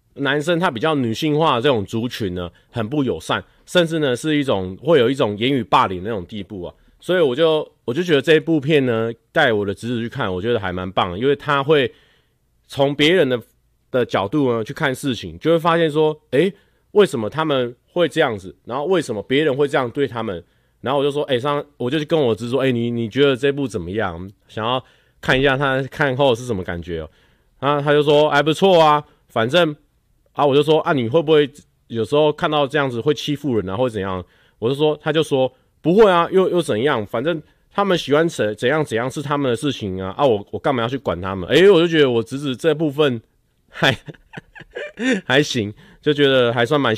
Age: 30-49